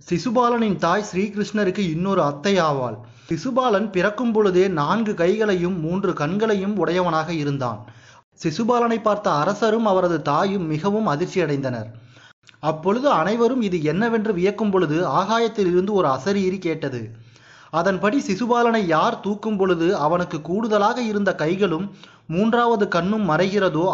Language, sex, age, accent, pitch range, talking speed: Tamil, male, 30-49, native, 160-210 Hz, 110 wpm